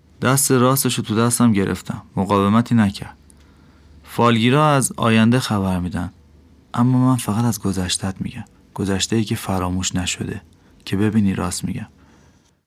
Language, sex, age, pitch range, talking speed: Persian, male, 30-49, 95-115 Hz, 130 wpm